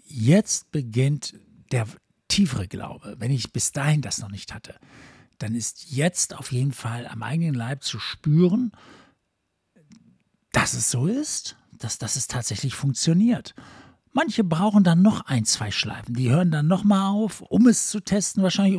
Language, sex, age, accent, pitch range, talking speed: German, male, 60-79, German, 115-155 Hz, 160 wpm